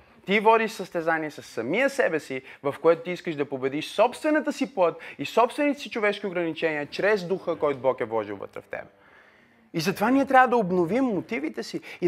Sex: male